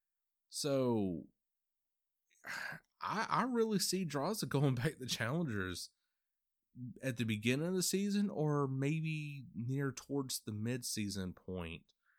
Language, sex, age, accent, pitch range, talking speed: English, male, 30-49, American, 110-150 Hz, 115 wpm